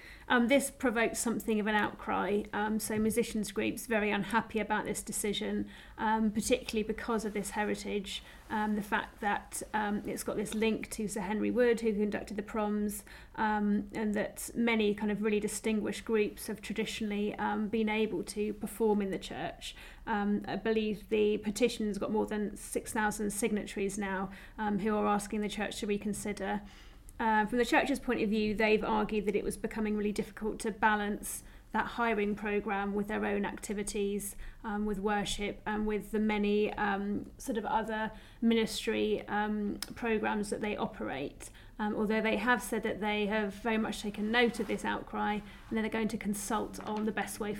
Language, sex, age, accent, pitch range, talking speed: English, female, 30-49, British, 205-220 Hz, 185 wpm